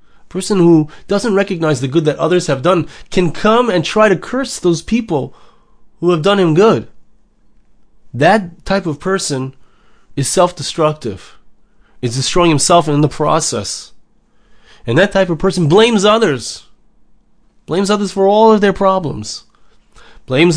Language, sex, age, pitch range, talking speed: English, male, 20-39, 135-195 Hz, 145 wpm